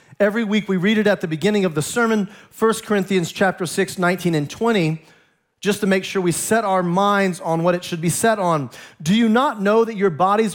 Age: 40-59